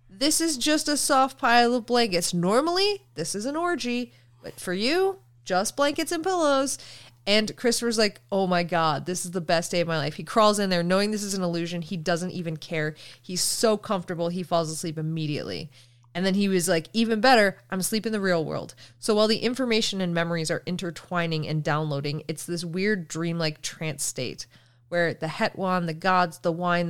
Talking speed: 200 wpm